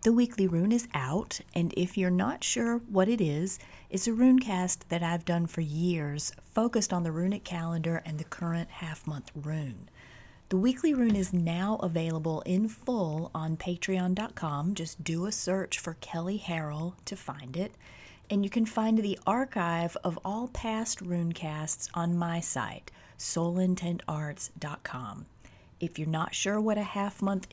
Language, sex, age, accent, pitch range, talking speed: English, female, 30-49, American, 155-195 Hz, 160 wpm